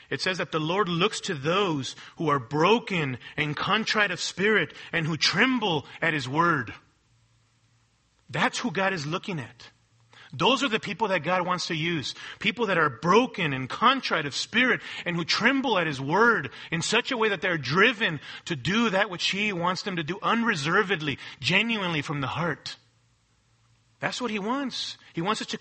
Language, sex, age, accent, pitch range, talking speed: English, male, 40-59, American, 135-210 Hz, 185 wpm